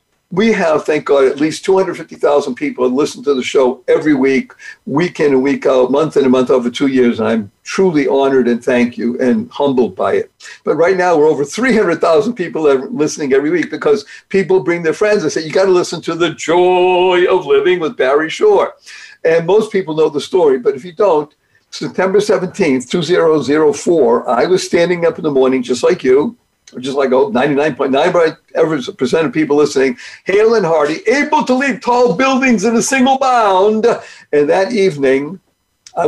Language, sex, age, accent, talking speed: English, male, 60-79, American, 190 wpm